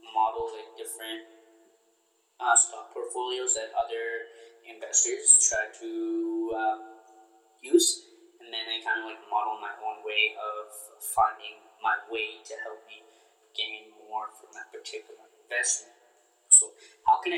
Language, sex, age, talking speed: English, male, 20-39, 135 wpm